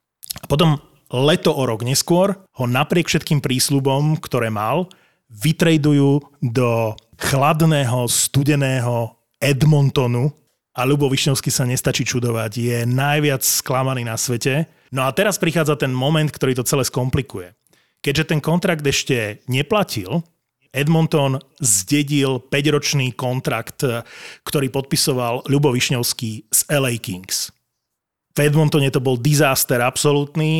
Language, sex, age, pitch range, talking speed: Slovak, male, 30-49, 125-150 Hz, 115 wpm